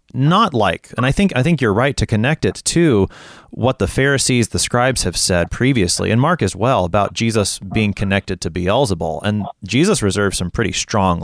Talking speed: 200 wpm